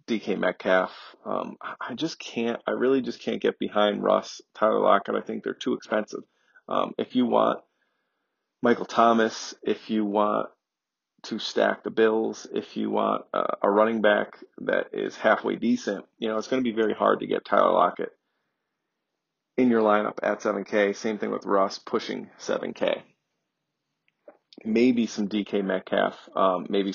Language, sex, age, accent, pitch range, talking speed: English, male, 30-49, American, 100-115 Hz, 165 wpm